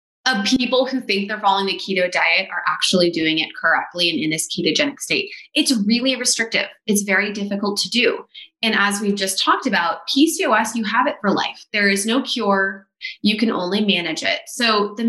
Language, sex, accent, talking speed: English, female, American, 200 wpm